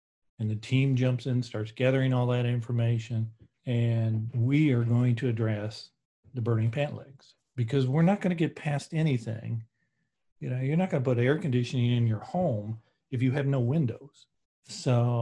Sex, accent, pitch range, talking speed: male, American, 120-140 Hz, 175 wpm